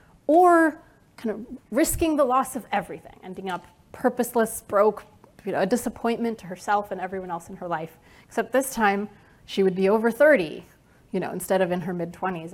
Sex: female